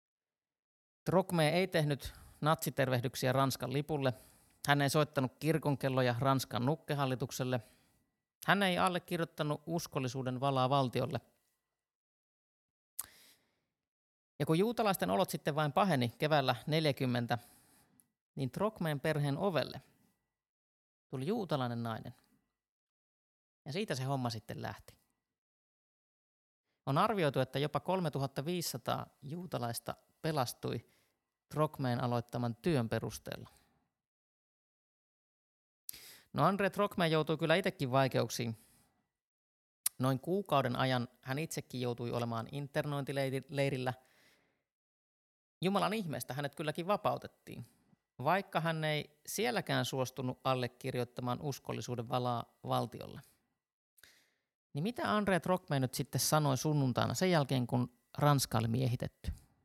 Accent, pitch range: native, 125-160 Hz